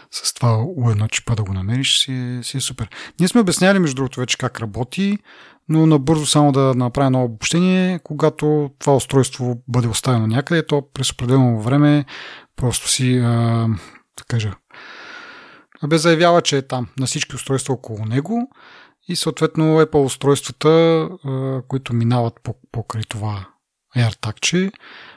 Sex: male